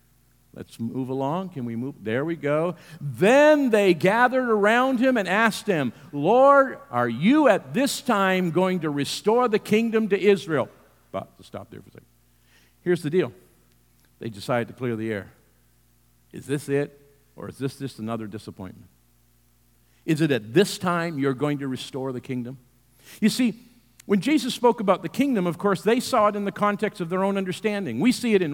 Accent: American